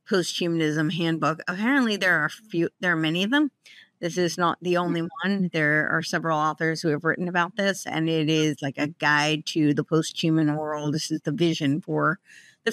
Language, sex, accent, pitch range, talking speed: English, female, American, 155-190 Hz, 205 wpm